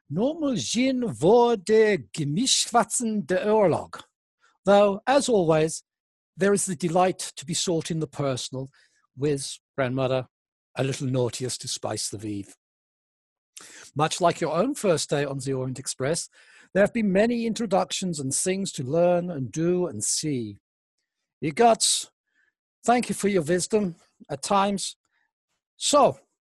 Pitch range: 140-200 Hz